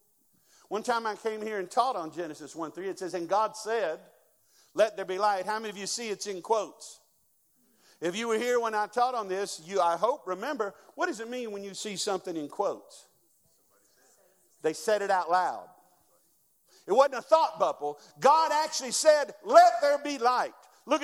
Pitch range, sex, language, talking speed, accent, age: 195-270 Hz, male, English, 195 wpm, American, 50-69